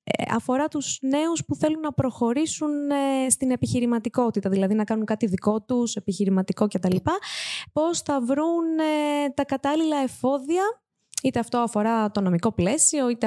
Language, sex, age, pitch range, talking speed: Greek, female, 20-39, 200-285 Hz, 135 wpm